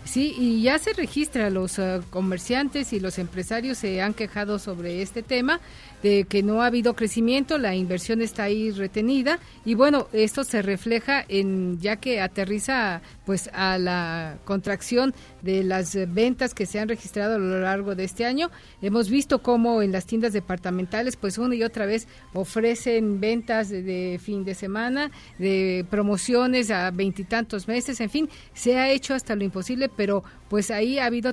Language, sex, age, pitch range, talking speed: Spanish, female, 50-69, 190-240 Hz, 170 wpm